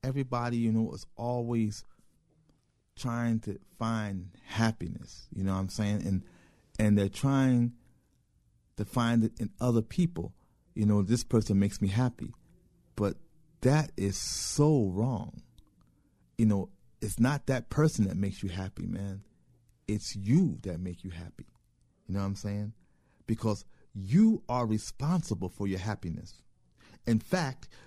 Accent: American